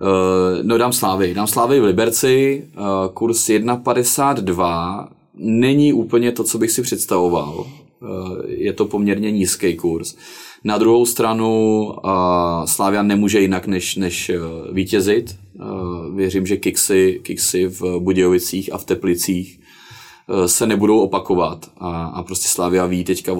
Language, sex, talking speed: Czech, male, 120 wpm